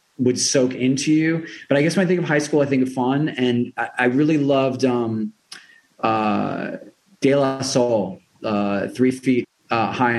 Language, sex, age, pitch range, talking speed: English, male, 30-49, 120-145 Hz, 190 wpm